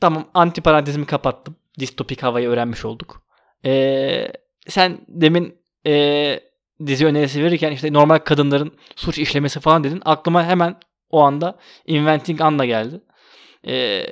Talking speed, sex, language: 125 wpm, male, Turkish